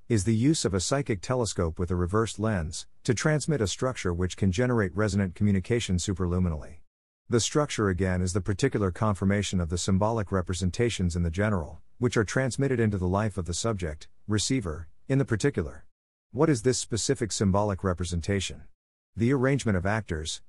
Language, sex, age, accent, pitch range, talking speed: English, male, 50-69, American, 90-115 Hz, 170 wpm